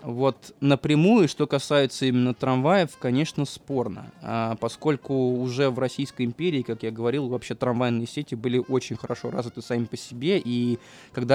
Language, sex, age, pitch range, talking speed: Russian, male, 20-39, 120-140 Hz, 150 wpm